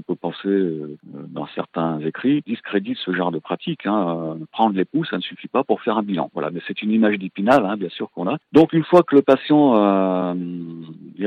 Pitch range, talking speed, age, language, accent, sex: 90-110 Hz, 225 wpm, 50-69, French, French, male